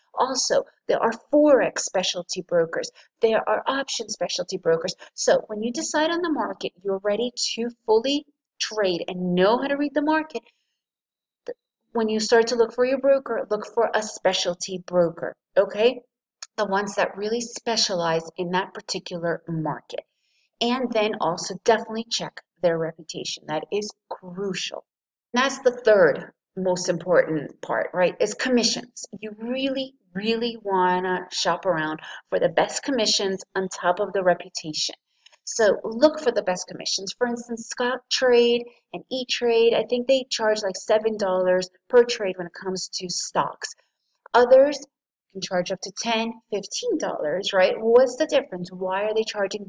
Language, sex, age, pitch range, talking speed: English, female, 30-49, 185-250 Hz, 155 wpm